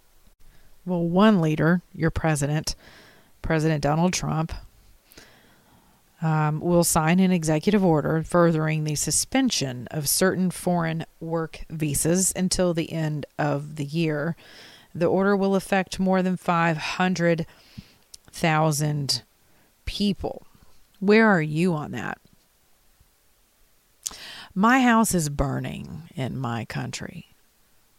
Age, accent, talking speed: 40-59, American, 105 wpm